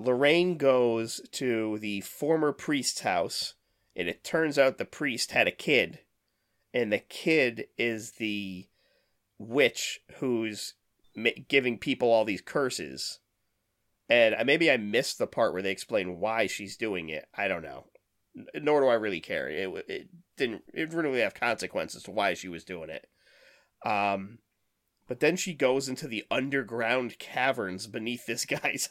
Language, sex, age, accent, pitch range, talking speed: English, male, 30-49, American, 115-160 Hz, 155 wpm